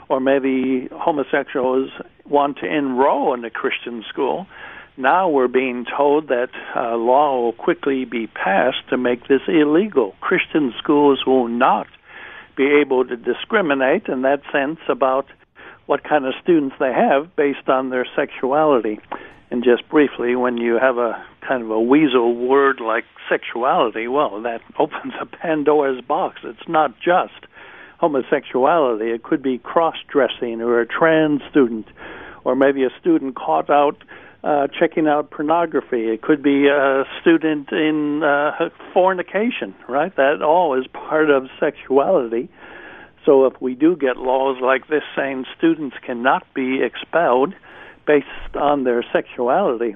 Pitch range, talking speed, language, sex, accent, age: 125-150 Hz, 145 wpm, English, male, American, 60-79